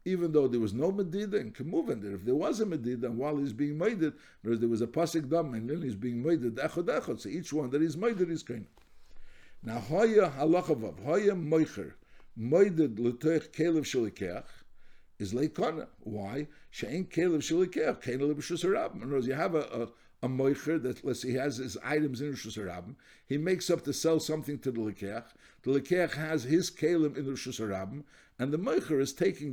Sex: male